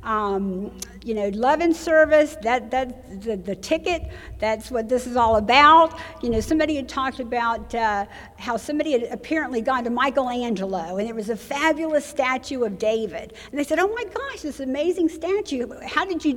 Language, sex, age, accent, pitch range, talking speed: English, female, 60-79, American, 235-305 Hz, 185 wpm